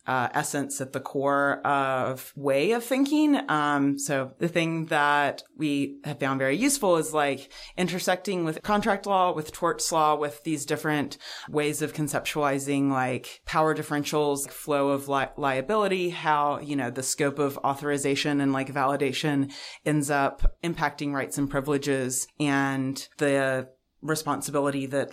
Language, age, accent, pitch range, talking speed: English, 30-49, American, 140-155 Hz, 145 wpm